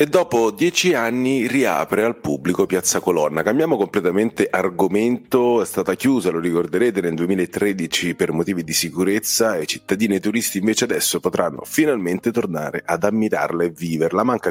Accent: native